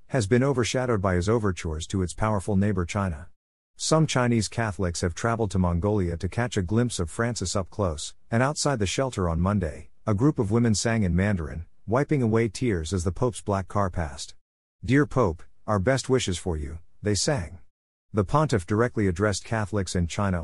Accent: American